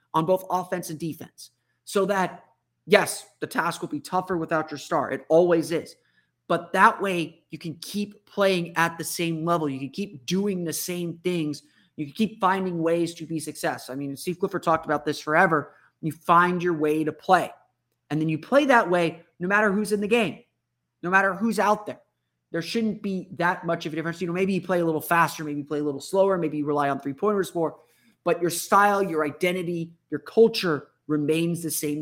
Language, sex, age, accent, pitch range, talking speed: English, male, 30-49, American, 150-180 Hz, 215 wpm